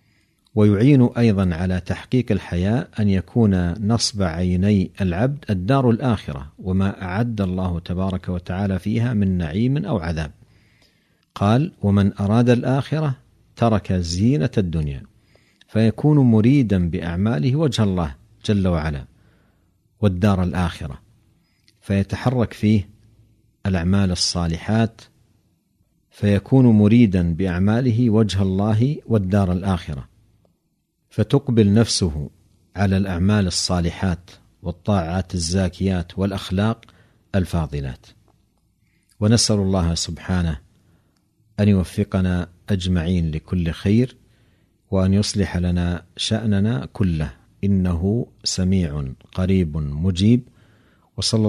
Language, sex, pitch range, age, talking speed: Arabic, male, 90-110 Hz, 50-69, 90 wpm